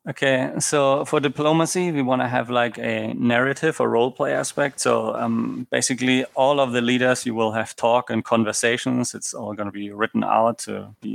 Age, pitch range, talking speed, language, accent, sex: 30-49, 115-135 Hz, 195 wpm, English, German, male